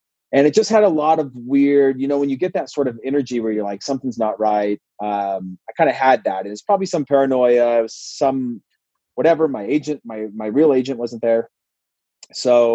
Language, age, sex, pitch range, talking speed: English, 30-49, male, 110-140 Hz, 210 wpm